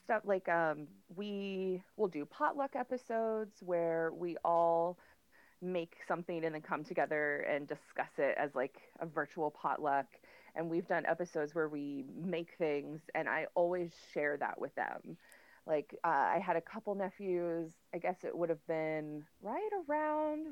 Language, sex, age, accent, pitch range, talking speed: English, female, 30-49, American, 155-205 Hz, 160 wpm